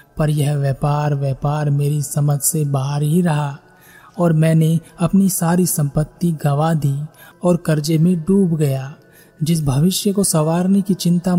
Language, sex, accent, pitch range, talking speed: Hindi, male, native, 150-180 Hz, 150 wpm